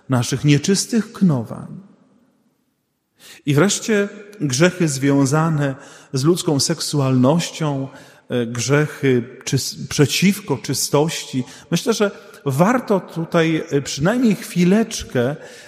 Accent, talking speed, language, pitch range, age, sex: native, 75 wpm, Polish, 135-175 Hz, 40-59, male